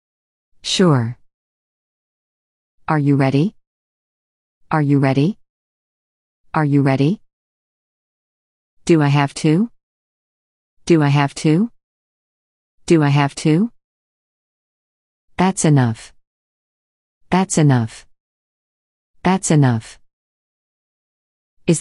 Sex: female